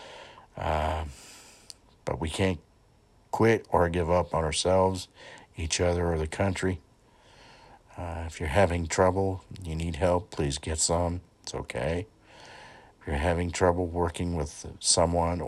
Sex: male